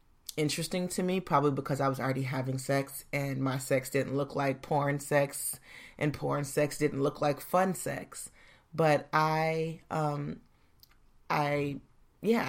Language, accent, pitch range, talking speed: English, American, 135-165 Hz, 150 wpm